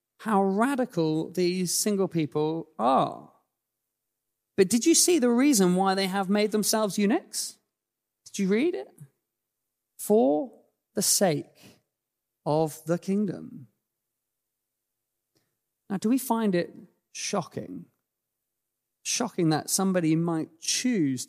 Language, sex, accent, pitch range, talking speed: English, male, British, 140-195 Hz, 110 wpm